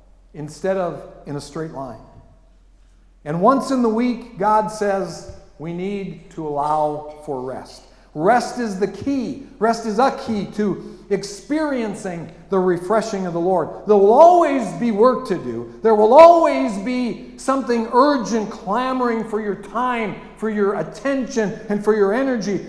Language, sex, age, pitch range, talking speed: English, male, 50-69, 185-245 Hz, 155 wpm